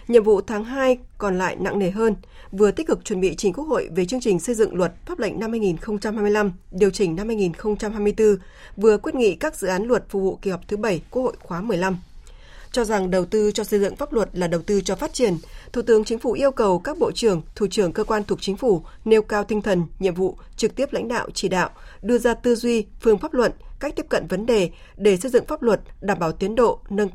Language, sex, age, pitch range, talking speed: Vietnamese, female, 20-39, 190-235 Hz, 250 wpm